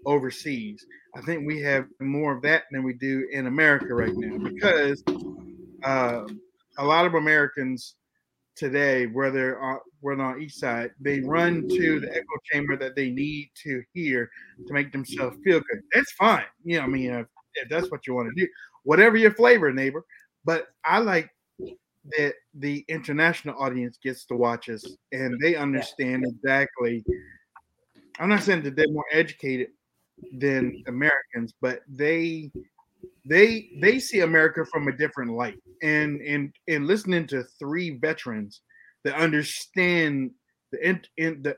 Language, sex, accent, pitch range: English, male, American, 130-165 Hz